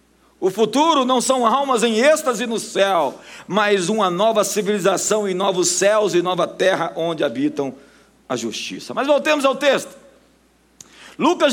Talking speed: 145 wpm